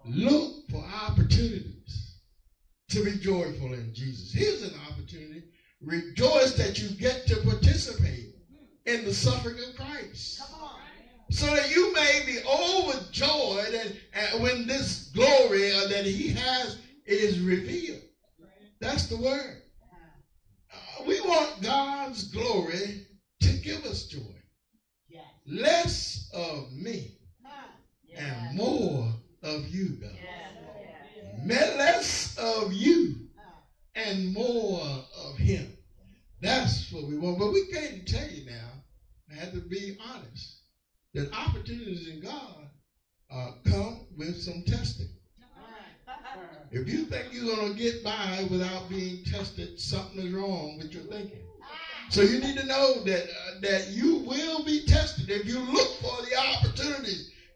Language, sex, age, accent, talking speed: English, male, 60-79, American, 125 wpm